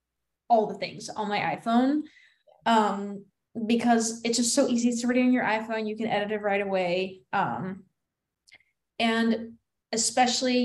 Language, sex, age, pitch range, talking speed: English, female, 10-29, 210-240 Hz, 145 wpm